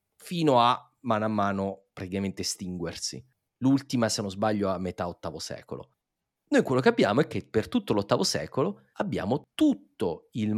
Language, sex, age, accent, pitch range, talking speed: Italian, male, 30-49, native, 95-115 Hz, 160 wpm